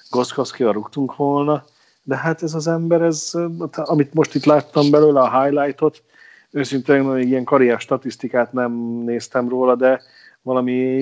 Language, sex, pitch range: Hungarian, male, 115-135 Hz